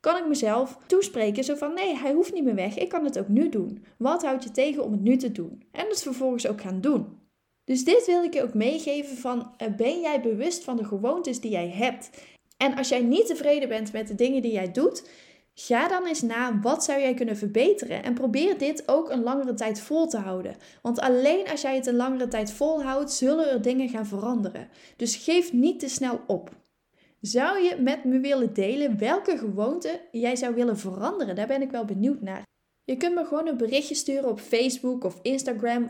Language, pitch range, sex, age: Dutch, 225-290 Hz, female, 10-29